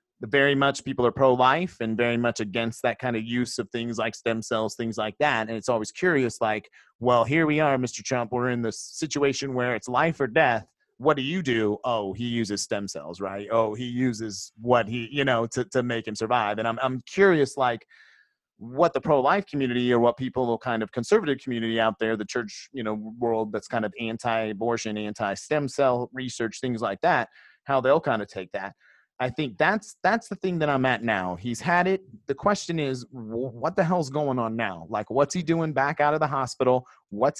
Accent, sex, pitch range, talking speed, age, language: American, male, 115-145 Hz, 215 wpm, 30-49, English